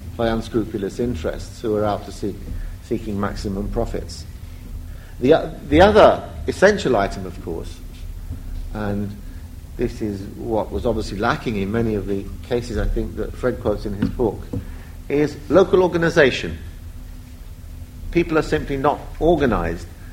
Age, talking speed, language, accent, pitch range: 50-69, 135 wpm, English, British, 85-115 Hz